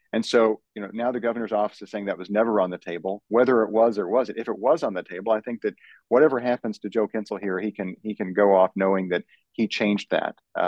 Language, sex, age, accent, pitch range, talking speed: English, male, 40-59, American, 90-110 Hz, 270 wpm